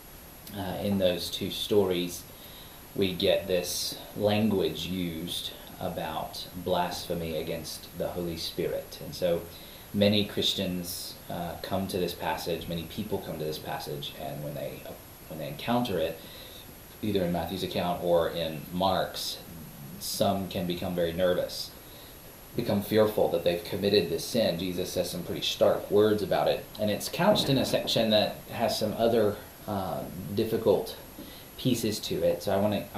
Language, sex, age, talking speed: English, male, 30-49, 155 wpm